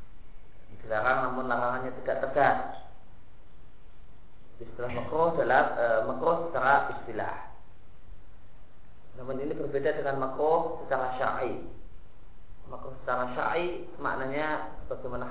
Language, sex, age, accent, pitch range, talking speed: Indonesian, male, 30-49, native, 120-145 Hz, 80 wpm